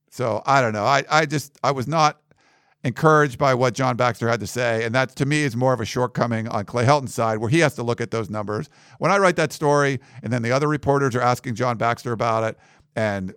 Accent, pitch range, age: American, 125-155 Hz, 50-69